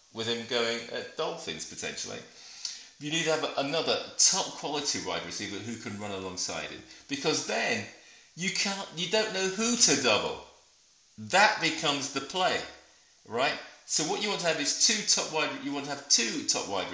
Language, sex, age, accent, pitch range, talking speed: English, male, 40-59, British, 115-160 Hz, 185 wpm